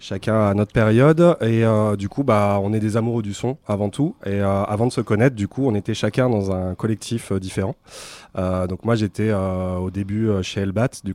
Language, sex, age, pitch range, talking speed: English, male, 30-49, 95-115 Hz, 235 wpm